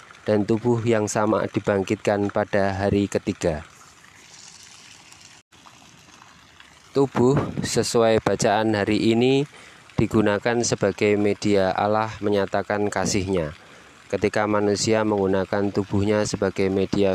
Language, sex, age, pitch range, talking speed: Indonesian, male, 20-39, 95-110 Hz, 90 wpm